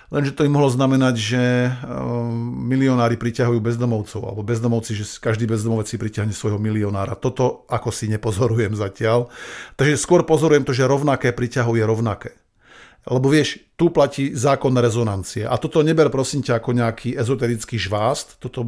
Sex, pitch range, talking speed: male, 110-135 Hz, 150 wpm